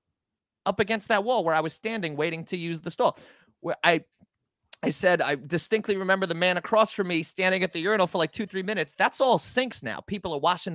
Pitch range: 150-200 Hz